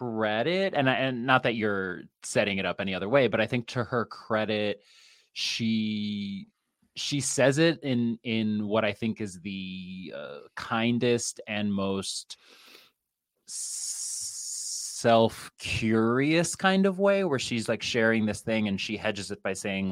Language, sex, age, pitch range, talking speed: English, male, 20-39, 95-125 Hz, 150 wpm